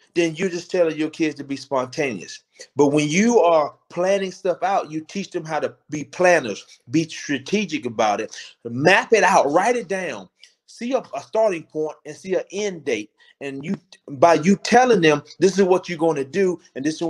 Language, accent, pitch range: English, American, 150-195 Hz